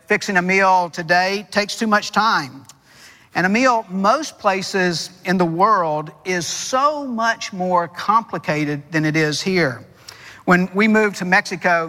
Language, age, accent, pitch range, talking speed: English, 50-69, American, 170-210 Hz, 150 wpm